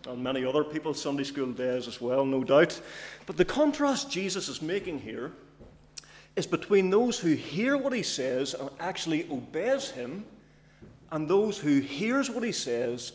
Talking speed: 170 wpm